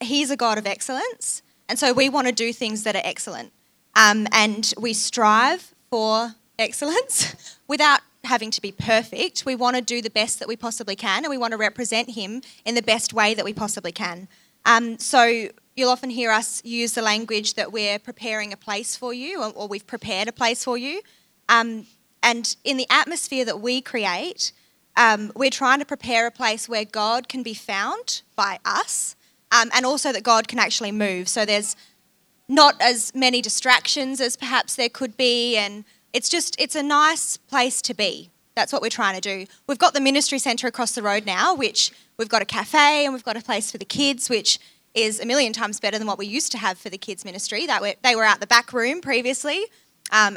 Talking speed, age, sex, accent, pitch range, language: 210 wpm, 20-39, female, Australian, 215-260 Hz, English